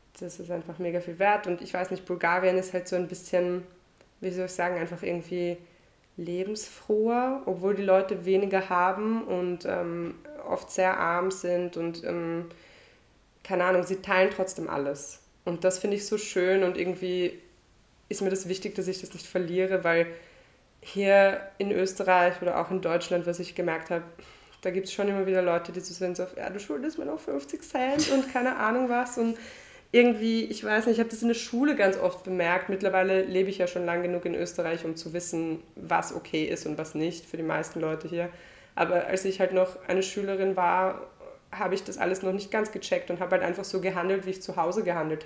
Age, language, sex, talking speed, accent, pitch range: 20-39, German, female, 205 wpm, German, 175-195 Hz